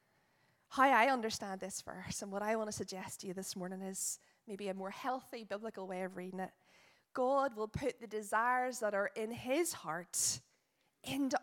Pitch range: 210-255 Hz